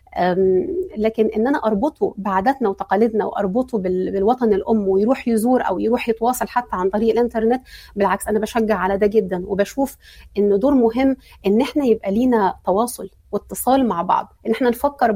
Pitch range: 210-260 Hz